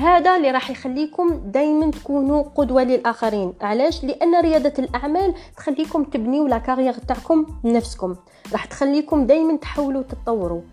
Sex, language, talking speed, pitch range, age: female, Arabic, 130 wpm, 220-290 Hz, 20-39